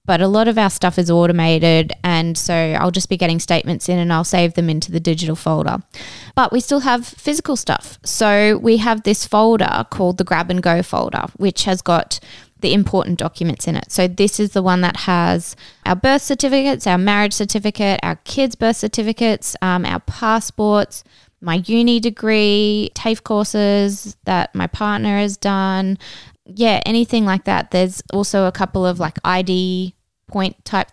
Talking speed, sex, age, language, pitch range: 180 wpm, female, 20-39, English, 175-220 Hz